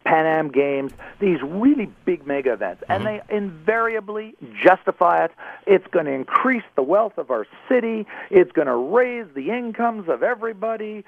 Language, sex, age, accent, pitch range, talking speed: English, male, 50-69, American, 140-210 Hz, 155 wpm